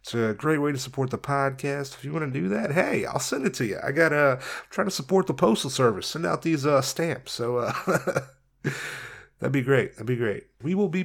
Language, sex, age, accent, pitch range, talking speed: English, male, 30-49, American, 130-175 Hz, 245 wpm